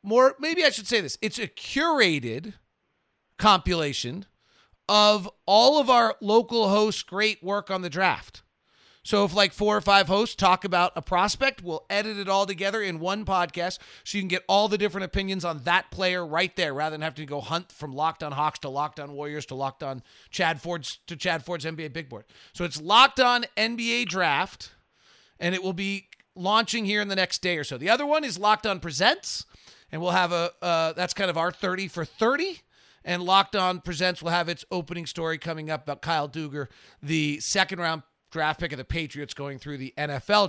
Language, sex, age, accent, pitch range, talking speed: English, male, 30-49, American, 155-205 Hz, 210 wpm